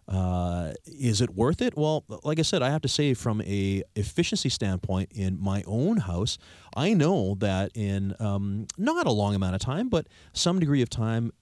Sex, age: male, 30-49